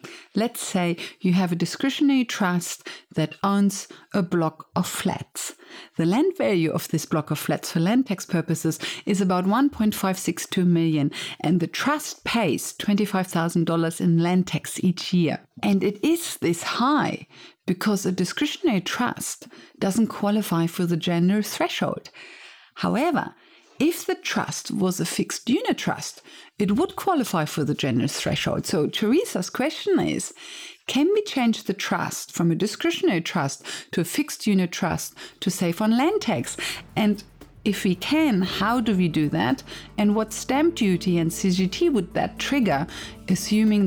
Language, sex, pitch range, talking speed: English, female, 170-225 Hz, 155 wpm